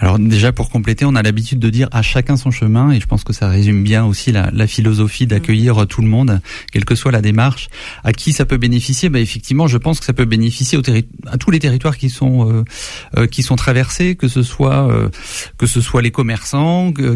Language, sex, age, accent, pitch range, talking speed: French, male, 30-49, French, 105-130 Hz, 235 wpm